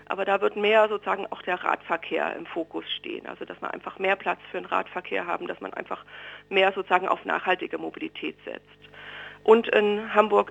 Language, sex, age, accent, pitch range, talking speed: German, female, 50-69, German, 170-210 Hz, 190 wpm